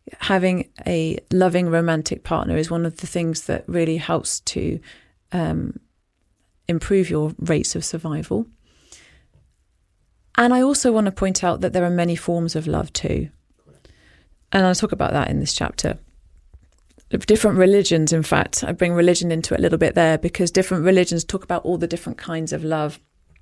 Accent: British